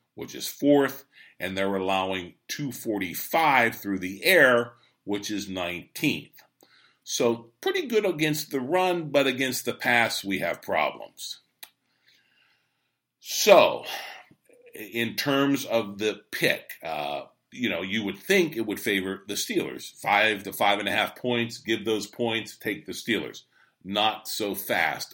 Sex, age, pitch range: male, 50-69, 95-130 Hz